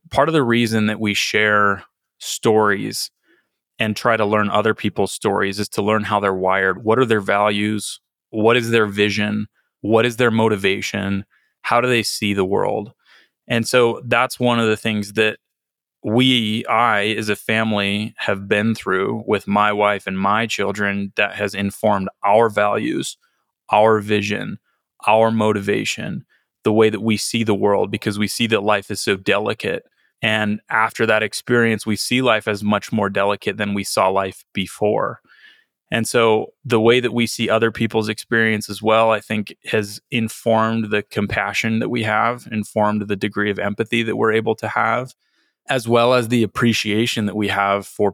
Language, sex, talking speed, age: English, male, 175 wpm, 20-39